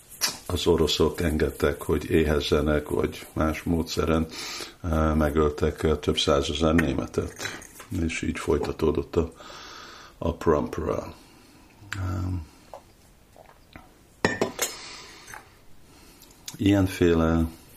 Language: Hungarian